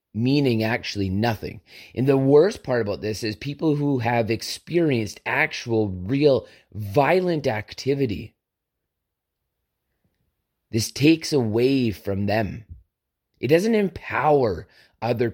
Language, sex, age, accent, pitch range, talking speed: English, male, 30-49, American, 110-145 Hz, 105 wpm